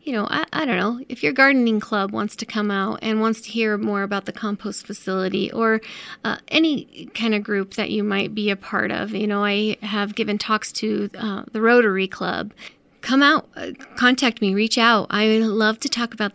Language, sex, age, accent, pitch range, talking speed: English, female, 30-49, American, 200-235 Hz, 215 wpm